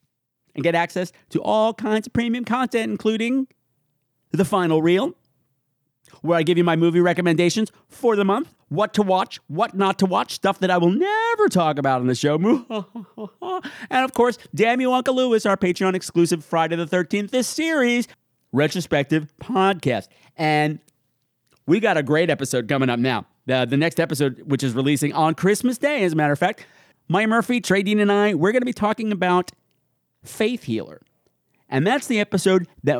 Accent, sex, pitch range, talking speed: American, male, 145-215 Hz, 180 wpm